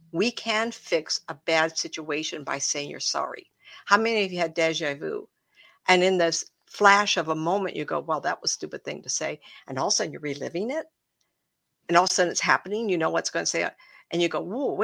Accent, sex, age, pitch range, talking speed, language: American, female, 60-79, 160-205 Hz, 245 wpm, English